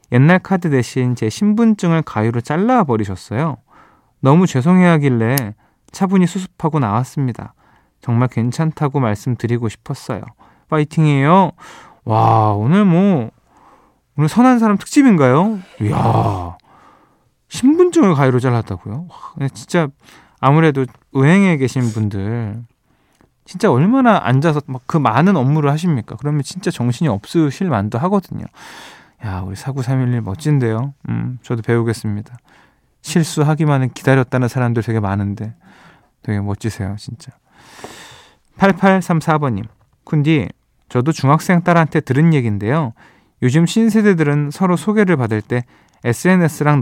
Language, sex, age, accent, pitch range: Korean, male, 20-39, native, 115-170 Hz